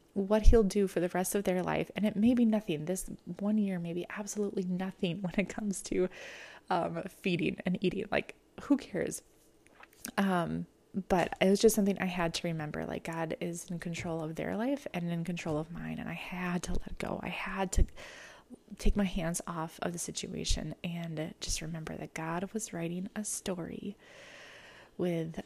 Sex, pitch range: female, 170-205 Hz